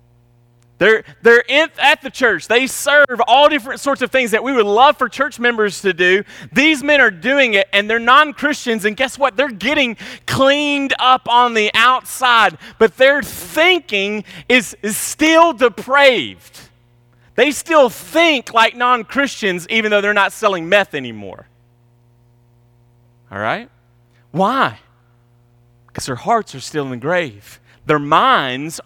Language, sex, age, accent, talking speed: English, male, 30-49, American, 150 wpm